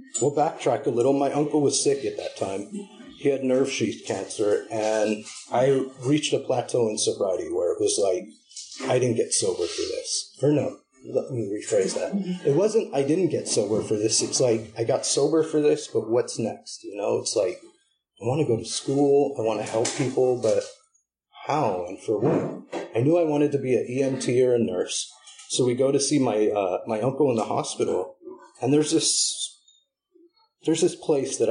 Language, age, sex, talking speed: English, 30-49, male, 205 wpm